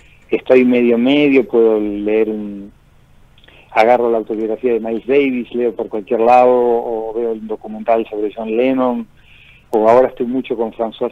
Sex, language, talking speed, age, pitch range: male, Spanish, 155 wpm, 40-59, 105-125 Hz